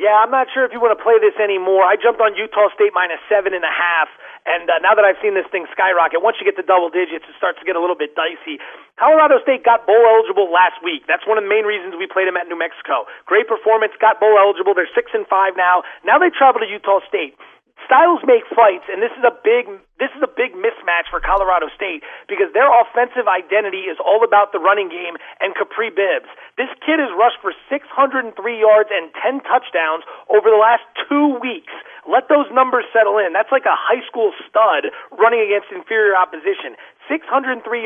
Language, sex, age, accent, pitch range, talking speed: English, male, 30-49, American, 195-260 Hz, 215 wpm